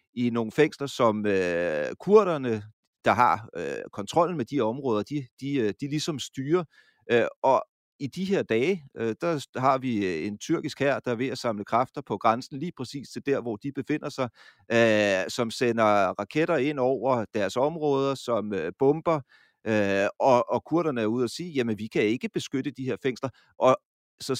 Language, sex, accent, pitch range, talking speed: Danish, male, native, 120-150 Hz, 165 wpm